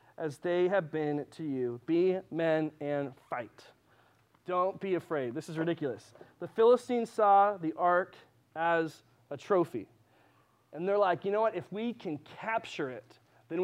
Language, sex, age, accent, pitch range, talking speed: English, male, 30-49, American, 145-195 Hz, 160 wpm